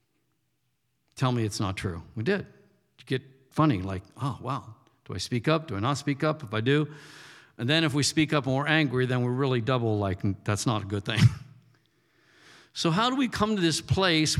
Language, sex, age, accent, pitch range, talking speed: English, male, 50-69, American, 125-170 Hz, 215 wpm